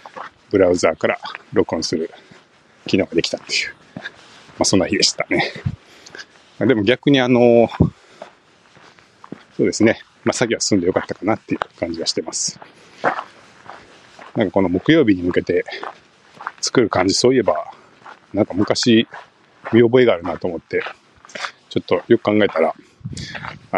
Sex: male